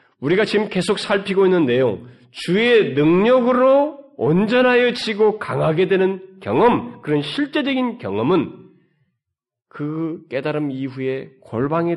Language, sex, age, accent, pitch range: Korean, male, 40-59, native, 120-190 Hz